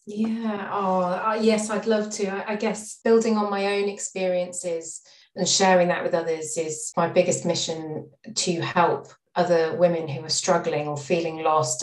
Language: English